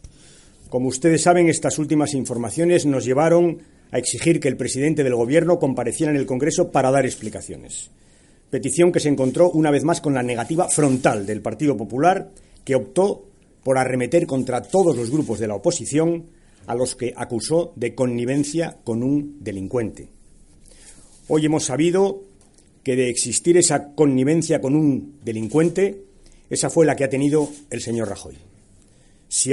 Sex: male